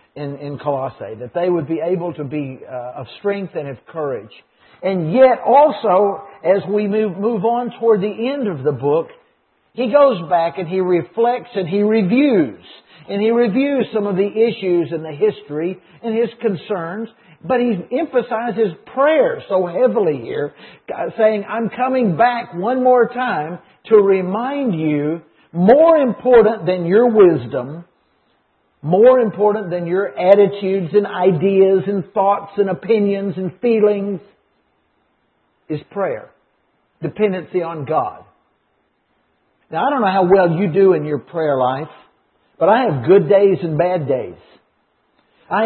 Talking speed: 150 wpm